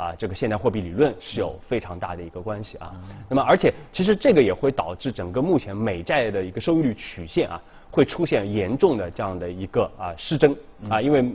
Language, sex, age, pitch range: Chinese, male, 20-39, 95-135 Hz